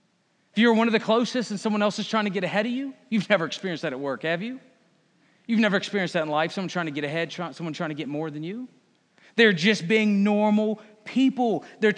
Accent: American